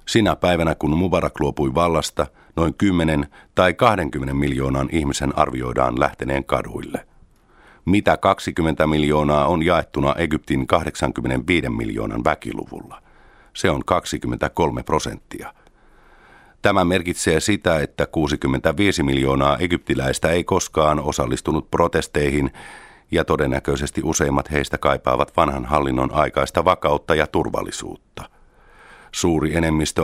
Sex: male